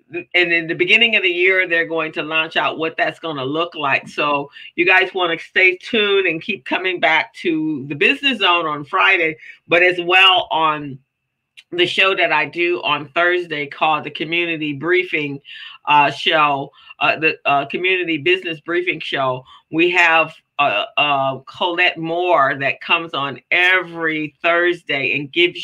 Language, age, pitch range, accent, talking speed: English, 50-69, 150-180 Hz, American, 170 wpm